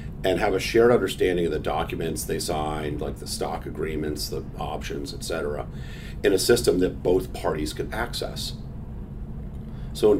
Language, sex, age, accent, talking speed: English, male, 40-59, American, 165 wpm